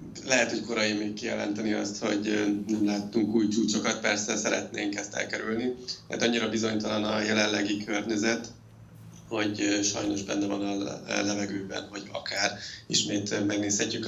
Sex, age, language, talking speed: male, 20-39, Hungarian, 130 wpm